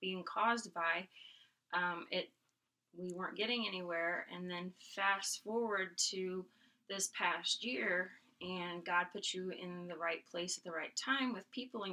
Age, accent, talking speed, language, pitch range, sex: 20-39, American, 160 wpm, English, 175-200 Hz, female